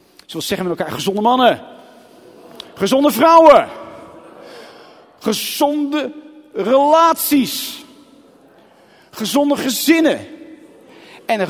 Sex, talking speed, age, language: male, 80 wpm, 50-69, Dutch